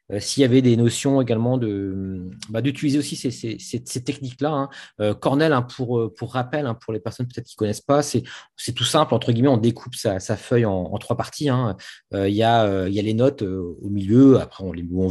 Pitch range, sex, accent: 100-125 Hz, male, French